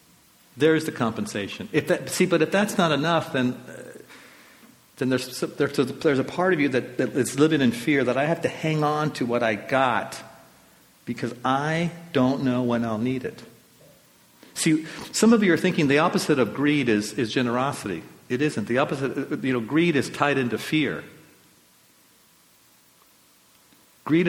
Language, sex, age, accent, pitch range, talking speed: English, male, 50-69, American, 125-165 Hz, 170 wpm